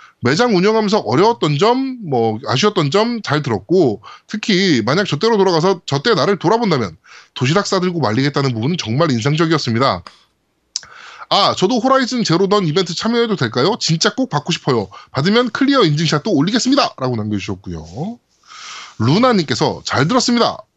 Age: 20-39